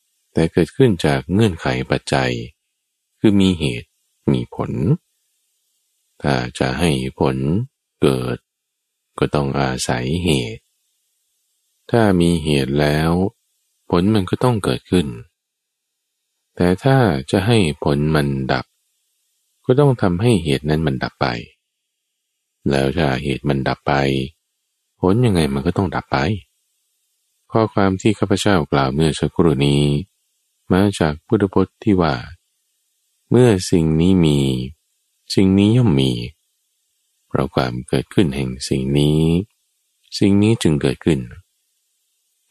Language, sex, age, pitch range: Thai, male, 20-39, 70-95 Hz